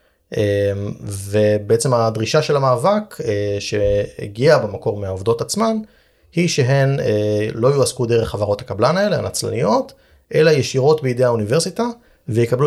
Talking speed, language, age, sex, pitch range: 105 wpm, Hebrew, 30-49, male, 105-135 Hz